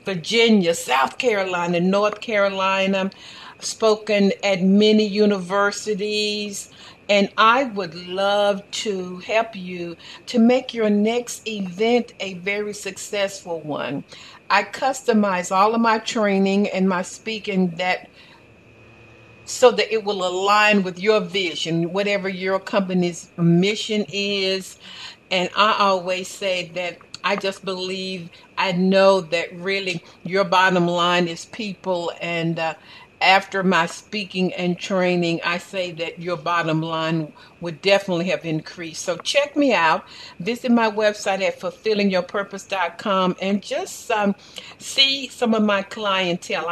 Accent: American